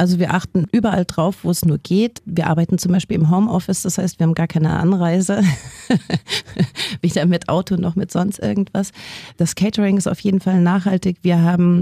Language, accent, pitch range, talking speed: German, German, 170-195 Hz, 195 wpm